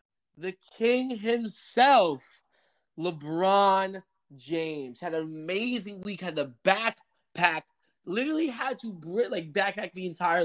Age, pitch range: 20-39, 145-190 Hz